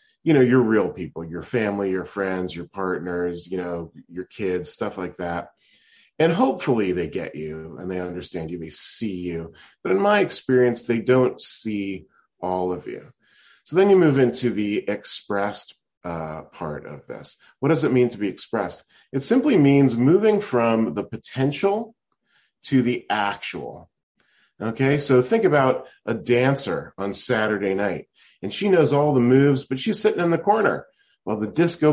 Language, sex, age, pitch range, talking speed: English, male, 30-49, 95-140 Hz, 175 wpm